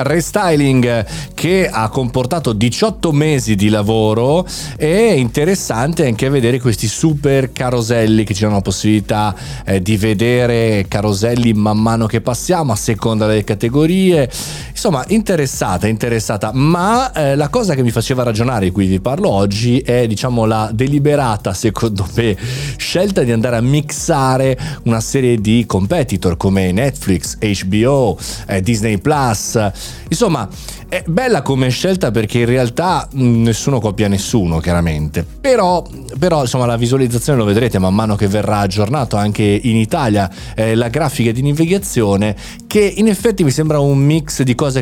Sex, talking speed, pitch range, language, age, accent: male, 150 wpm, 105-140 Hz, Italian, 30-49, native